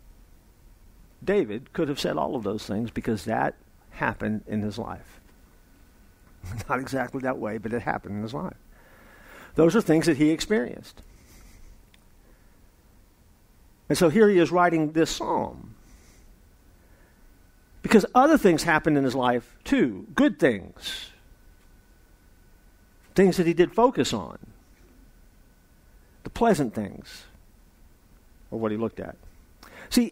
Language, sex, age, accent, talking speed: English, male, 50-69, American, 125 wpm